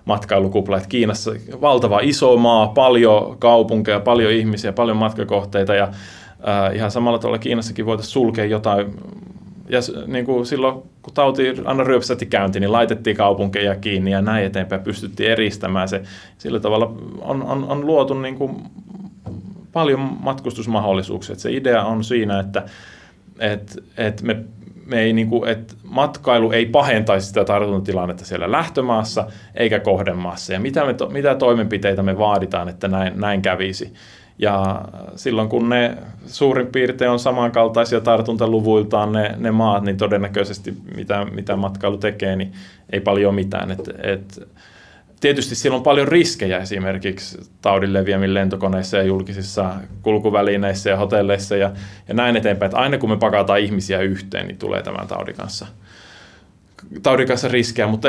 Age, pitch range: 20-39, 100-120 Hz